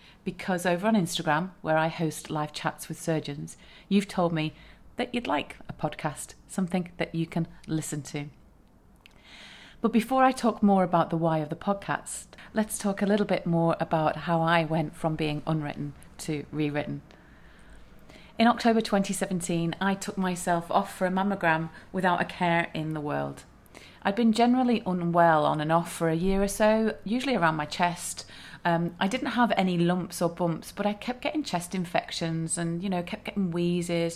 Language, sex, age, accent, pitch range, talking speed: English, female, 30-49, British, 160-195 Hz, 180 wpm